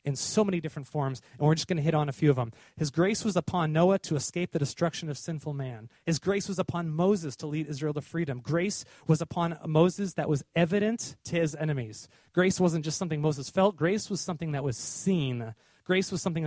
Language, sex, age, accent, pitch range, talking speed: English, male, 30-49, American, 145-180 Hz, 230 wpm